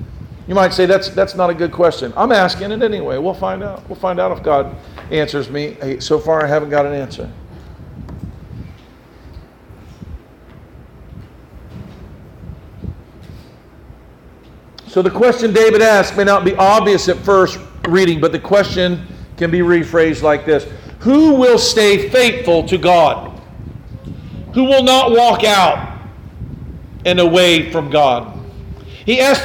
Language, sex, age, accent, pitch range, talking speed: English, male, 50-69, American, 170-220 Hz, 135 wpm